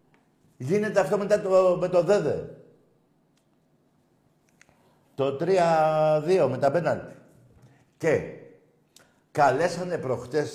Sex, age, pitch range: male, 60-79, 130-180 Hz